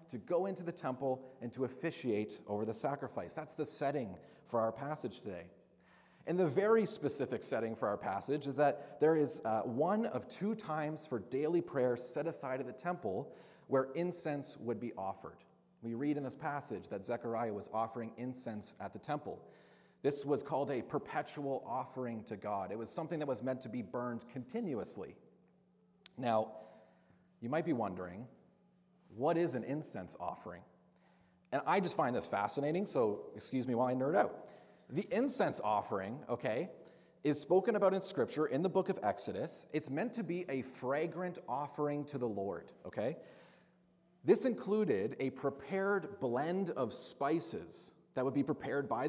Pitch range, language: 125-175 Hz, English